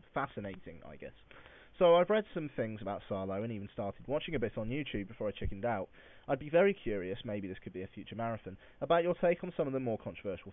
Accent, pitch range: British, 100-125 Hz